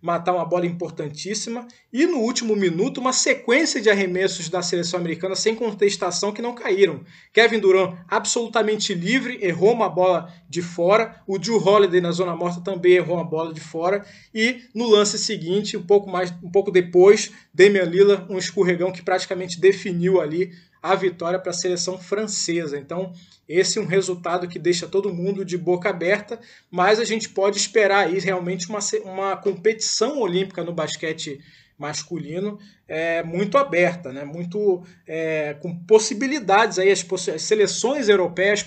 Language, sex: Portuguese, male